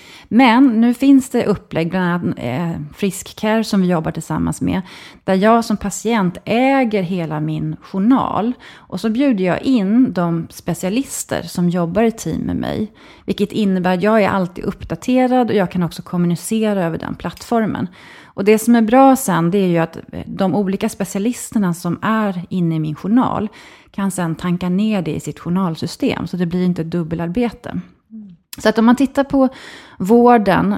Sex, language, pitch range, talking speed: female, Swedish, 170-225 Hz, 175 wpm